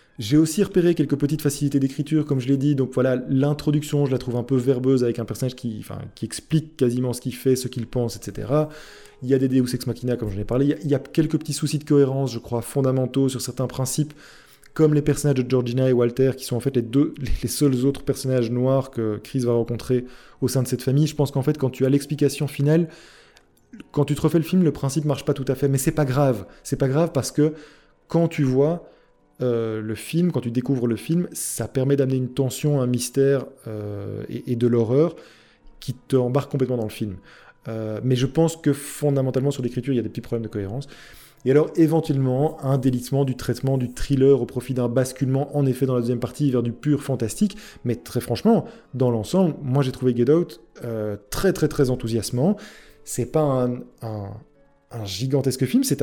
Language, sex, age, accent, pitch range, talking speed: French, male, 20-39, French, 125-150 Hz, 230 wpm